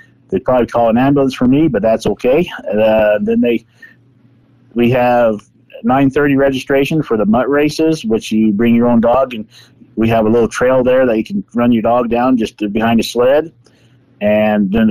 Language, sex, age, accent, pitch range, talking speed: English, male, 50-69, American, 120-145 Hz, 195 wpm